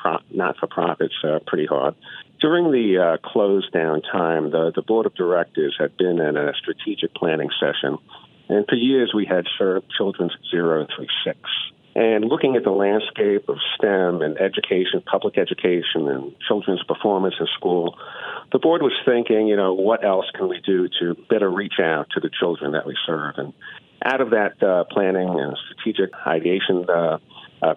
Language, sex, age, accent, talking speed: English, male, 50-69, American, 175 wpm